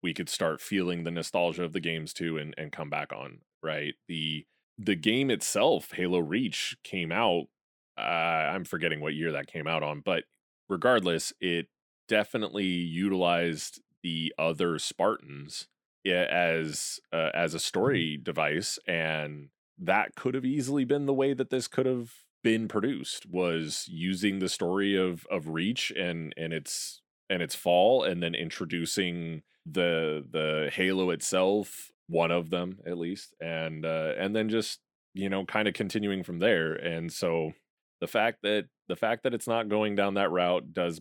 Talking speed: 165 wpm